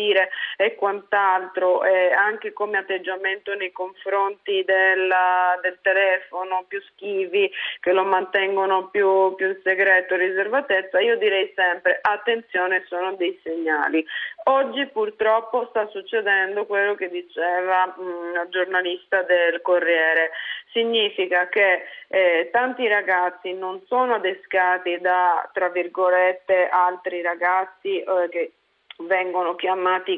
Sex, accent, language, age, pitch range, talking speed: female, native, Italian, 20-39, 180-215 Hz, 115 wpm